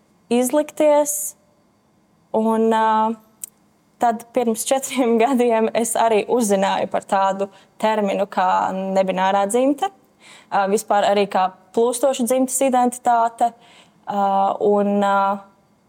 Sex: female